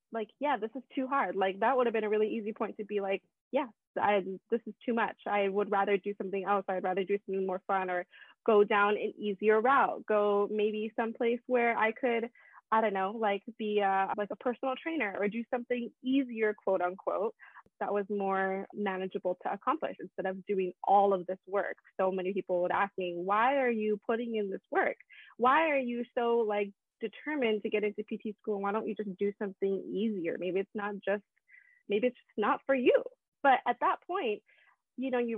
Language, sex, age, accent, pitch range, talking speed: English, female, 20-39, American, 195-245 Hz, 210 wpm